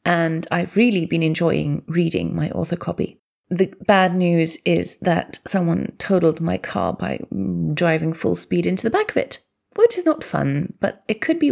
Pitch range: 165-235 Hz